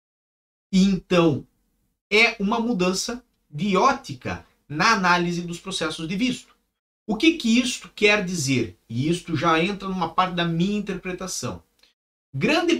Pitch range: 125-195 Hz